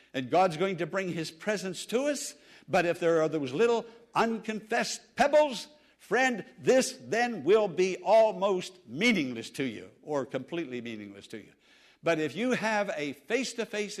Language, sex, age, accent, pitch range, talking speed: English, male, 60-79, American, 145-225 Hz, 160 wpm